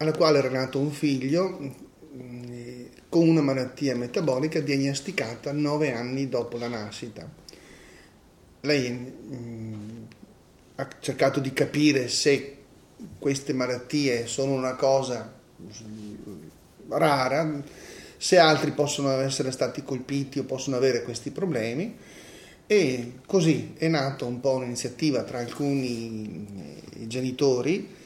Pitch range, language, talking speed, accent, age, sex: 125-150 Hz, Italian, 105 wpm, native, 30-49, male